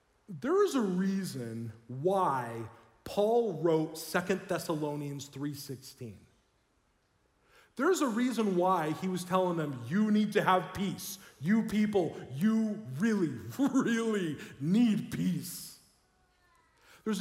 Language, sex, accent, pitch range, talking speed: English, male, American, 145-200 Hz, 110 wpm